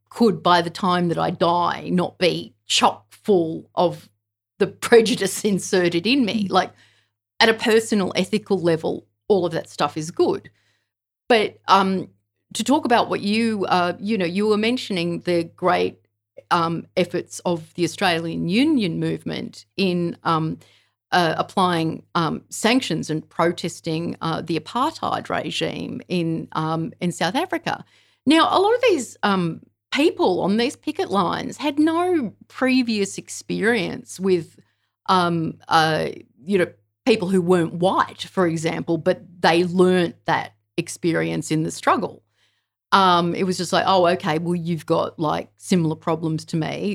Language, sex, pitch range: English, female, 160-200 Hz